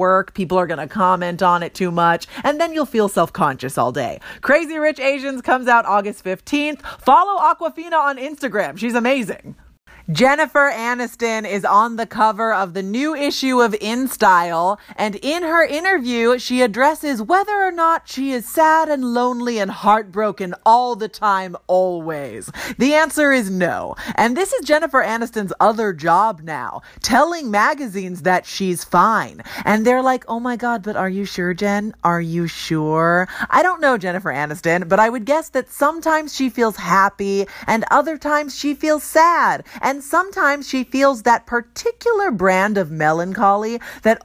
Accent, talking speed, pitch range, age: American, 170 wpm, 195-295 Hz, 30-49